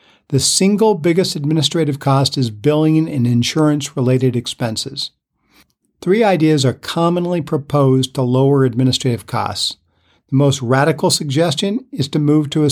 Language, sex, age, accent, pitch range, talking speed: English, male, 50-69, American, 130-160 Hz, 130 wpm